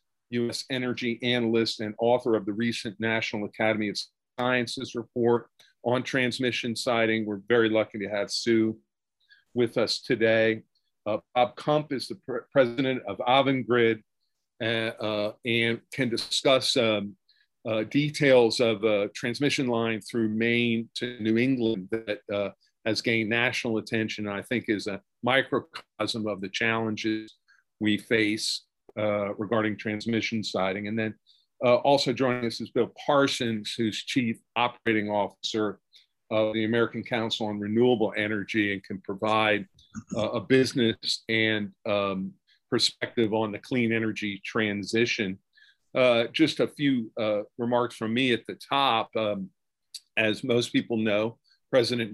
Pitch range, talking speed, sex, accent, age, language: 105-120 Hz, 145 wpm, male, American, 50-69, English